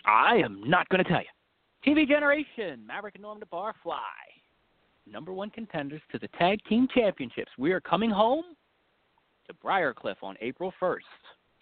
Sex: male